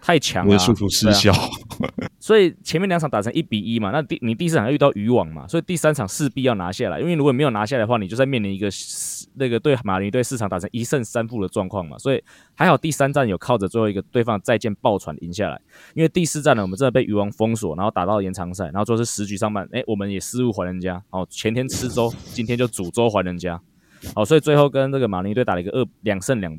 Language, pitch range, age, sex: Chinese, 95-130 Hz, 20-39, male